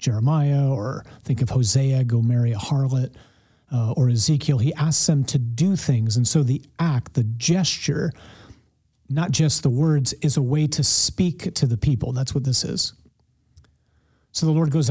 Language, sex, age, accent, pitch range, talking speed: English, male, 40-59, American, 120-155 Hz, 175 wpm